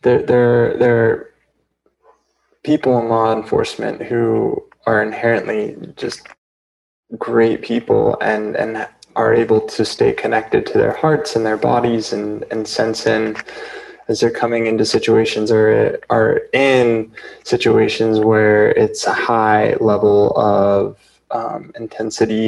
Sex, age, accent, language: male, 20-39, American, English